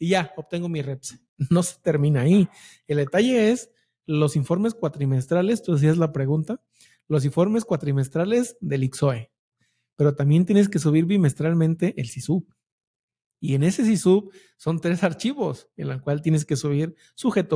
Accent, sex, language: Mexican, male, English